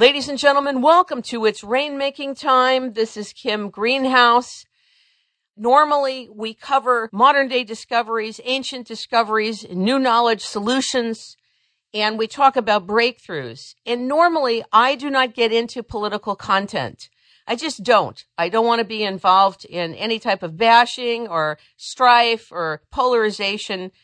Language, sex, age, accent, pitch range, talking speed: English, female, 50-69, American, 200-260 Hz, 135 wpm